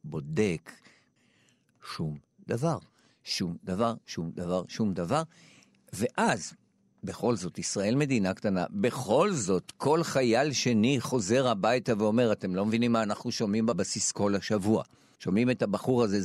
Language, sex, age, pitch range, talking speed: Hebrew, male, 50-69, 110-155 Hz, 135 wpm